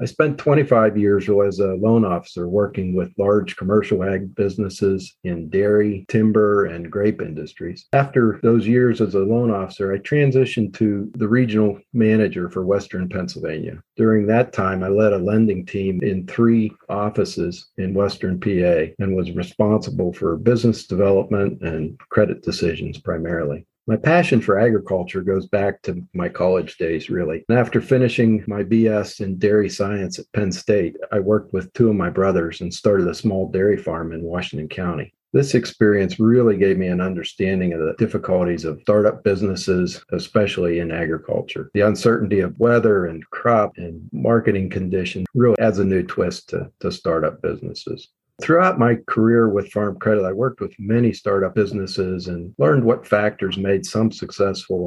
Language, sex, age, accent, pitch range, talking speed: English, male, 50-69, American, 95-110 Hz, 165 wpm